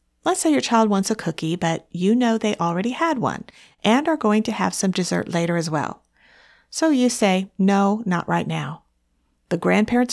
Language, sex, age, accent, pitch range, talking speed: English, female, 50-69, American, 170-245 Hz, 195 wpm